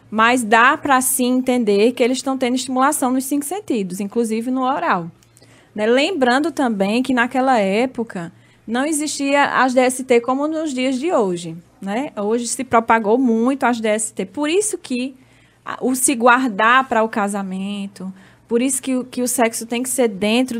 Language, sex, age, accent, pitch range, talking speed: Portuguese, female, 10-29, Brazilian, 225-280 Hz, 165 wpm